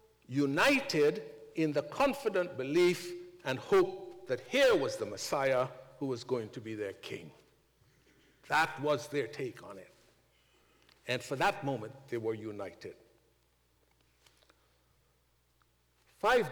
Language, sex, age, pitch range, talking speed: English, male, 60-79, 125-195 Hz, 120 wpm